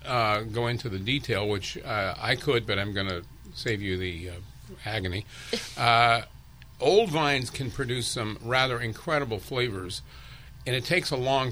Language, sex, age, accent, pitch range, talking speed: English, male, 50-69, American, 110-140 Hz, 165 wpm